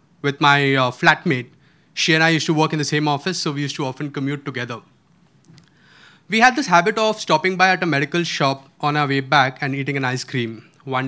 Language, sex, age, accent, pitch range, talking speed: Hindi, male, 20-39, native, 145-190 Hz, 225 wpm